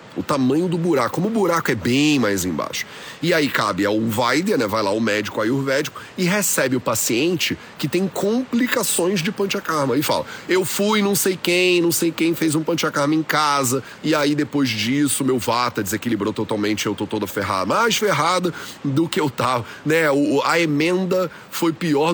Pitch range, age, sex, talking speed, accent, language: 125-170 Hz, 30-49, male, 190 wpm, Brazilian, Portuguese